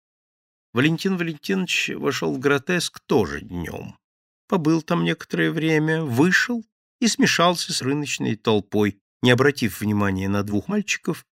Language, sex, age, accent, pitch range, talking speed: Russian, male, 50-69, native, 105-160 Hz, 120 wpm